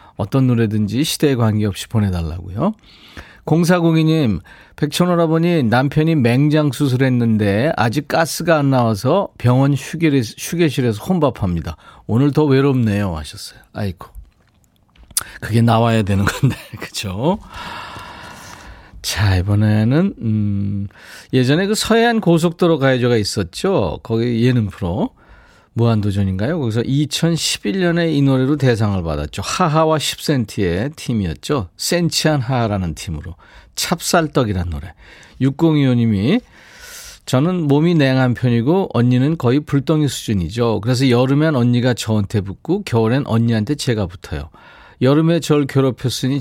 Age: 40-59